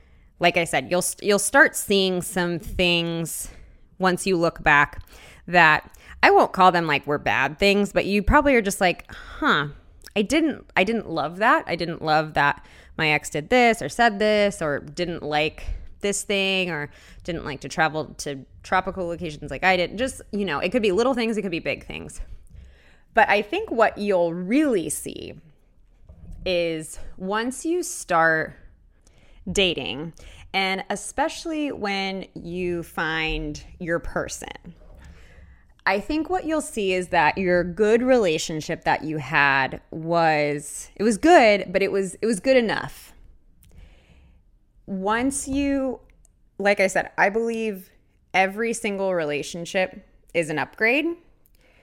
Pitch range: 150-210 Hz